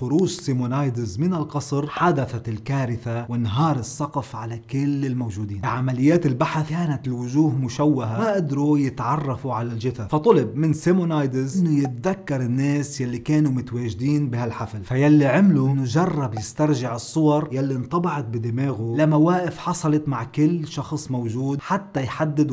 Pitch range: 125-155 Hz